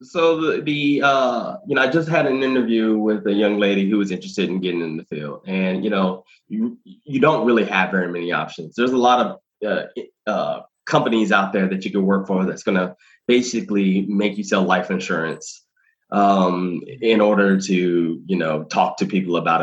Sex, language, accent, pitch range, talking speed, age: male, English, American, 95-115 Hz, 205 wpm, 20-39